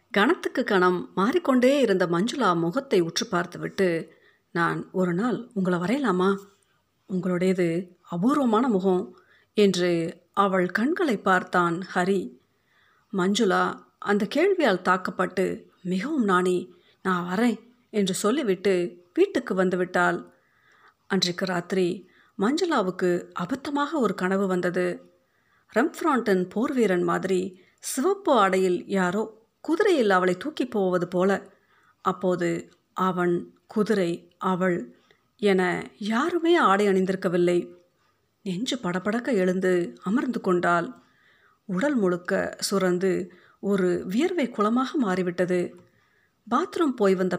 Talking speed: 95 wpm